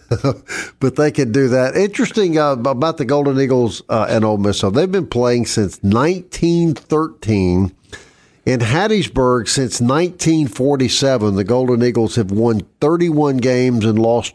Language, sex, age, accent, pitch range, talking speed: English, male, 50-69, American, 115-140 Hz, 140 wpm